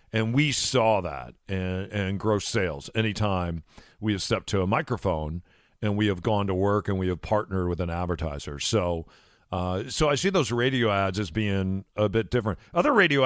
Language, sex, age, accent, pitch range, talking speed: English, male, 40-59, American, 95-130 Hz, 195 wpm